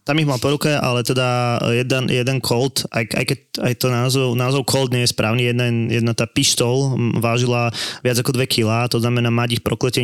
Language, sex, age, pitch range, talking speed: Slovak, male, 20-39, 115-125 Hz, 190 wpm